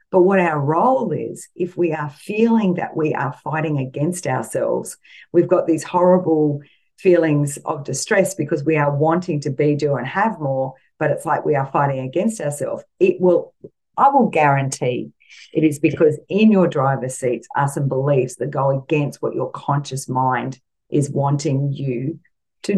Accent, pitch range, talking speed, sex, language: Australian, 140-180 Hz, 175 wpm, female, English